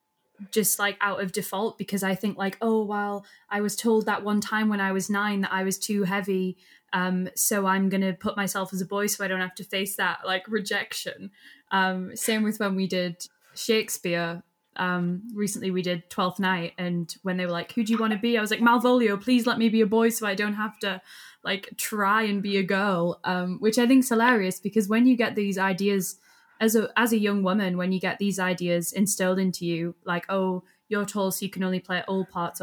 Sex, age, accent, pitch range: female, 10-29, British, 185-210 Hz